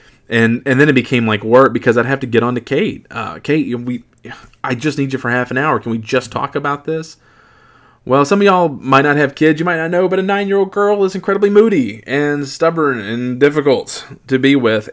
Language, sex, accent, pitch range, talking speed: English, male, American, 110-135 Hz, 235 wpm